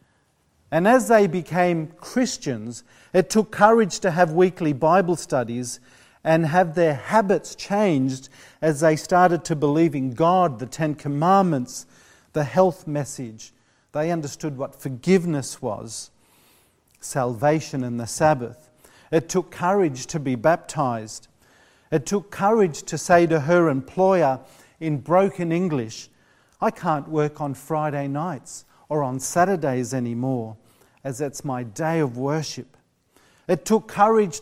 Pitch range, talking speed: 130-175 Hz, 135 wpm